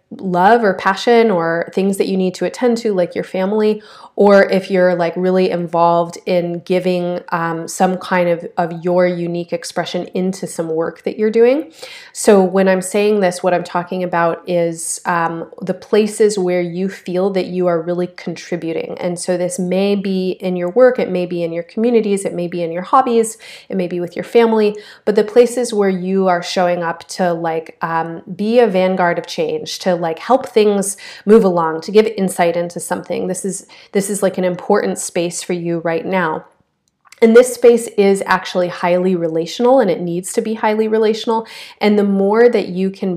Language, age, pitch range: English, 30-49, 175-210 Hz